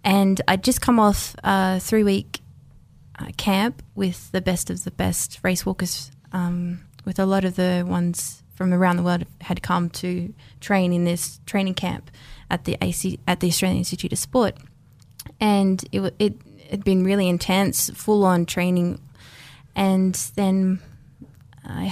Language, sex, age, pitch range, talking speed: English, female, 20-39, 170-195 Hz, 160 wpm